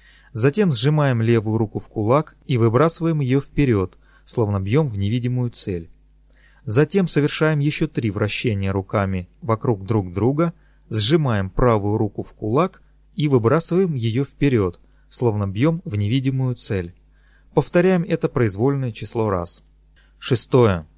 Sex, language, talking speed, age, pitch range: male, Russian, 125 wpm, 30-49, 110-145 Hz